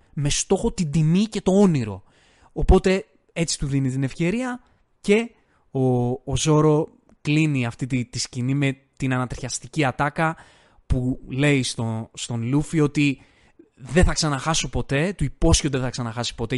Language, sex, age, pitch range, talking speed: Greek, male, 20-39, 135-175 Hz, 150 wpm